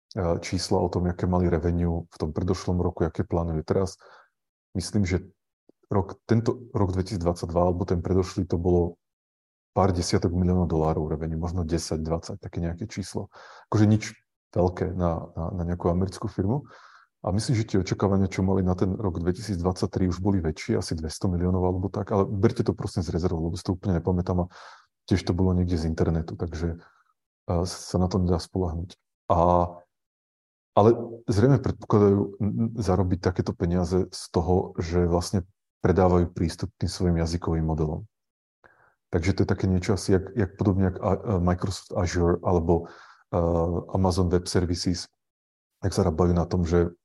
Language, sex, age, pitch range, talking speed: Slovak, male, 30-49, 85-100 Hz, 160 wpm